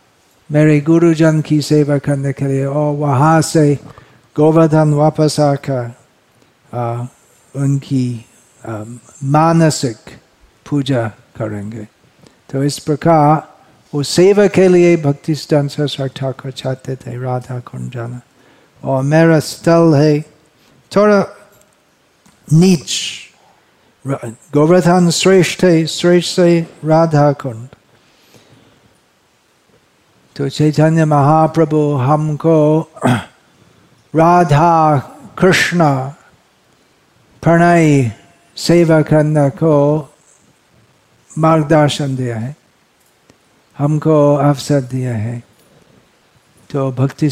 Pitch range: 135-165 Hz